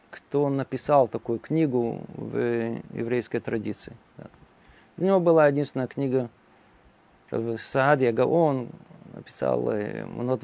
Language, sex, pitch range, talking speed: Russian, male, 130-165 Hz, 105 wpm